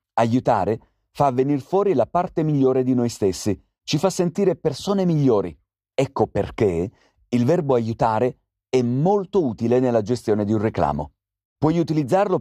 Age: 40-59